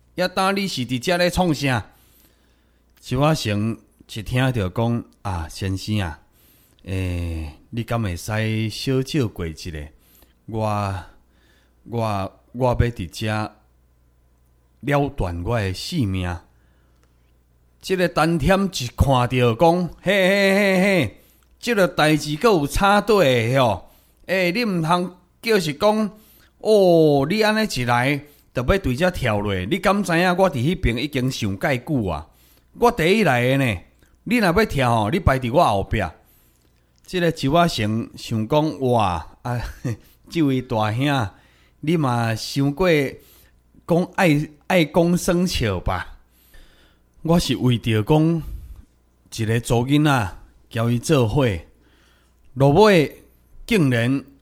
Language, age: Chinese, 30-49